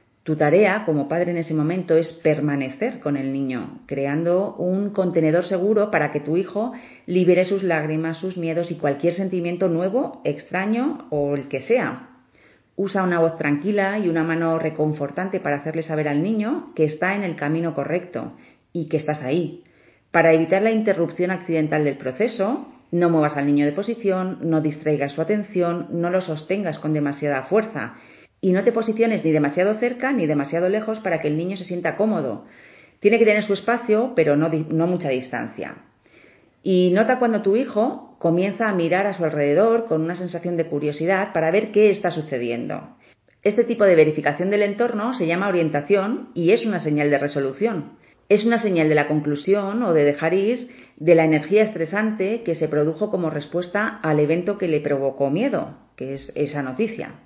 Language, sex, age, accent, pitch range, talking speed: Spanish, female, 30-49, Spanish, 155-205 Hz, 180 wpm